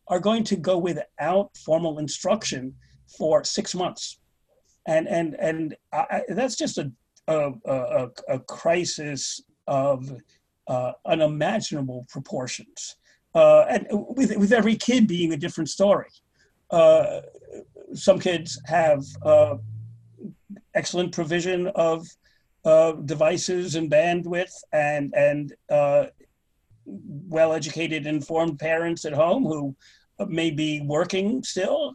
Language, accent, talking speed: English, American, 115 wpm